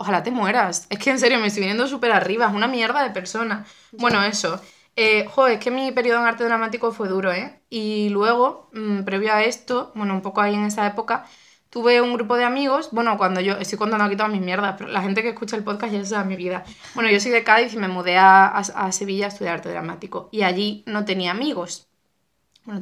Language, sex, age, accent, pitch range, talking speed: Spanish, female, 20-39, Spanish, 195-230 Hz, 235 wpm